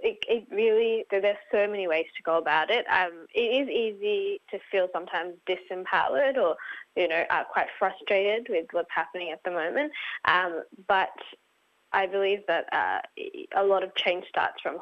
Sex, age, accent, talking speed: female, 10-29, Australian, 175 wpm